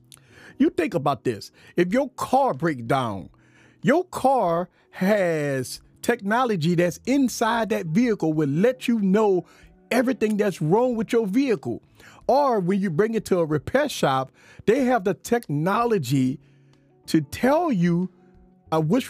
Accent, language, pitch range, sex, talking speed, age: American, English, 155-245 Hz, male, 140 wpm, 40-59